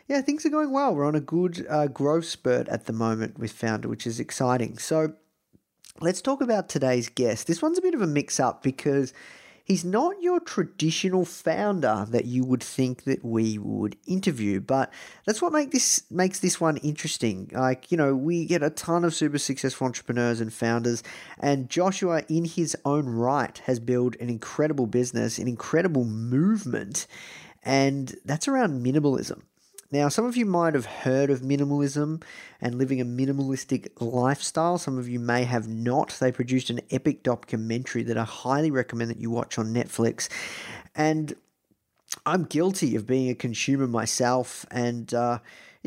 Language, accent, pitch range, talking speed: English, Australian, 125-175 Hz, 170 wpm